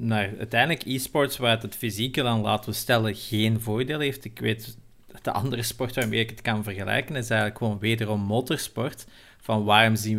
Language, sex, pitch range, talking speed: Dutch, male, 110-125 Hz, 195 wpm